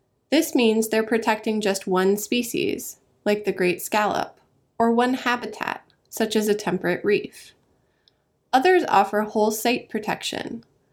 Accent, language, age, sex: American, English, 20-39, female